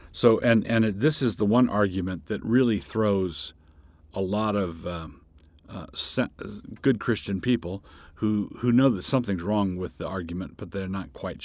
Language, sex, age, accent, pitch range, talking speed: English, male, 50-69, American, 80-110 Hz, 180 wpm